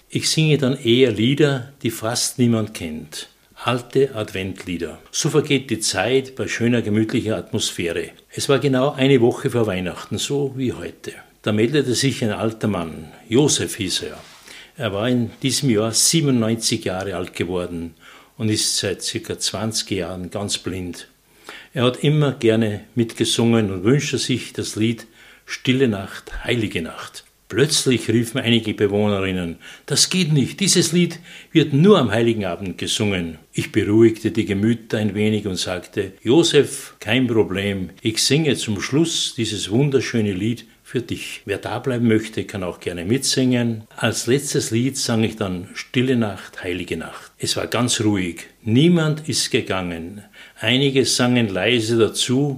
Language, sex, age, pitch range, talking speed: German, male, 60-79, 105-135 Hz, 150 wpm